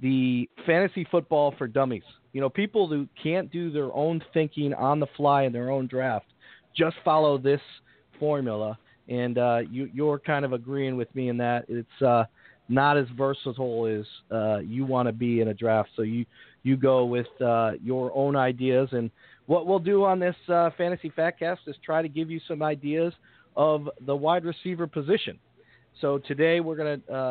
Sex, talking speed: male, 190 wpm